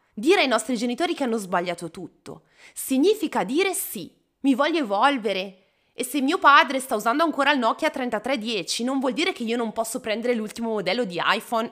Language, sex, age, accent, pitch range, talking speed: Italian, female, 20-39, native, 215-290 Hz, 185 wpm